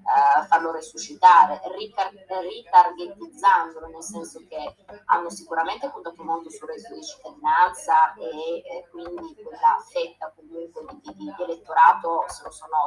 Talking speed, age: 135 wpm, 20-39